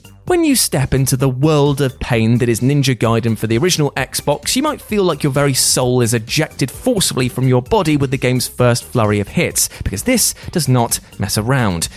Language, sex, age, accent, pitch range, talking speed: English, male, 30-49, British, 120-165 Hz, 210 wpm